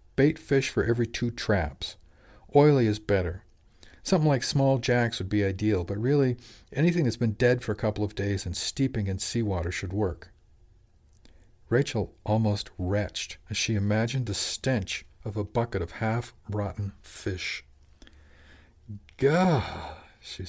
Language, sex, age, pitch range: English, male, 50-69, 95-120 Hz